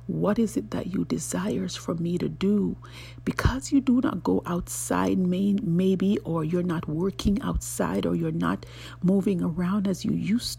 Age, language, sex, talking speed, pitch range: 50-69, English, female, 170 wpm, 125-205 Hz